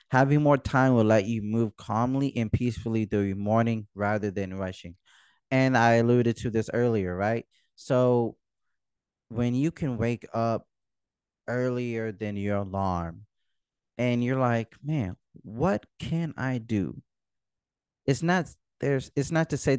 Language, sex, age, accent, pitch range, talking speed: English, male, 20-39, American, 100-125 Hz, 145 wpm